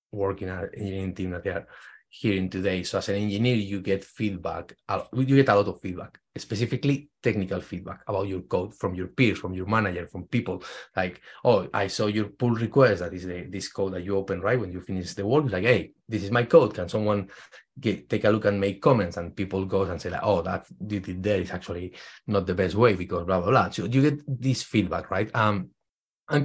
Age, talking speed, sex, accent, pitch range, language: 30-49, 225 wpm, male, Spanish, 95-115 Hz, English